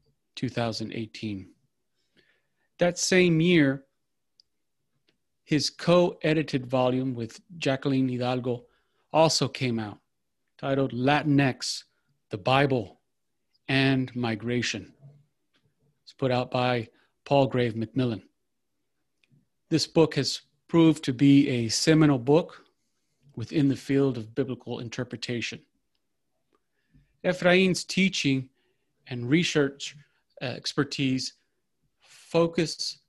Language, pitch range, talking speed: English, 130-150 Hz, 85 wpm